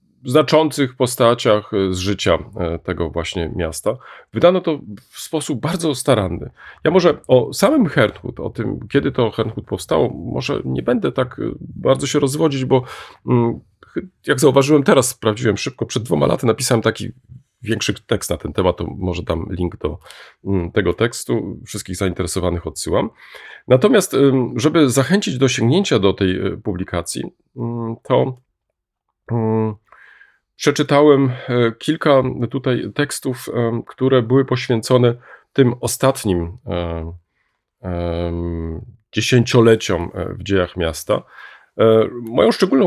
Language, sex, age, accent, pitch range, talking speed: Polish, male, 40-59, native, 95-130 Hz, 115 wpm